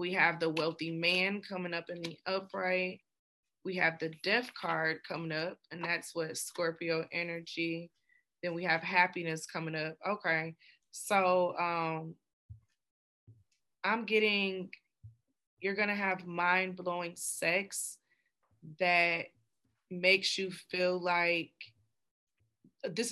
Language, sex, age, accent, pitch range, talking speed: English, female, 20-39, American, 165-185 Hz, 120 wpm